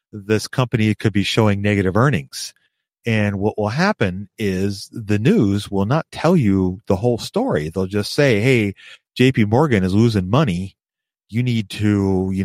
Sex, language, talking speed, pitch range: male, English, 165 wpm, 100-120 Hz